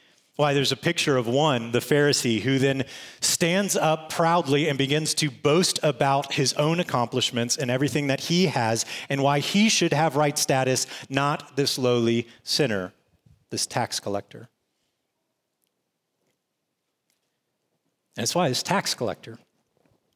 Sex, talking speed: male, 135 wpm